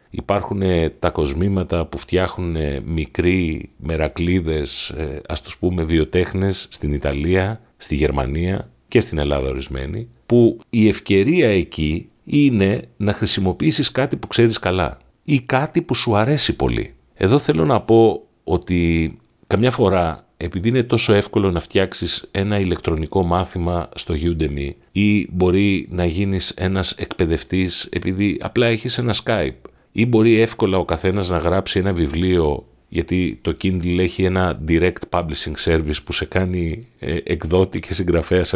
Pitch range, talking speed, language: 80-100 Hz, 140 wpm, Greek